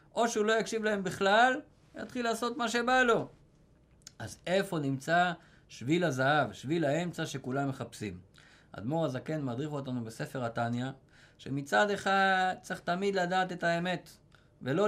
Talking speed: 135 wpm